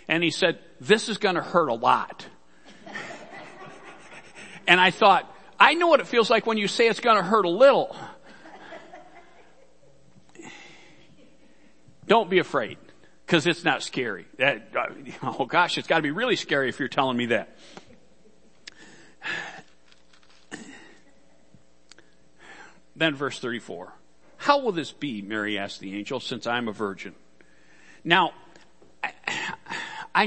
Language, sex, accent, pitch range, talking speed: English, male, American, 140-210 Hz, 130 wpm